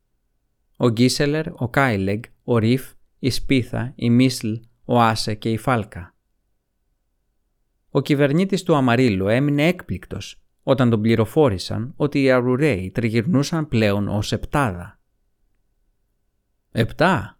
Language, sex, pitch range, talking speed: Greek, male, 105-135 Hz, 110 wpm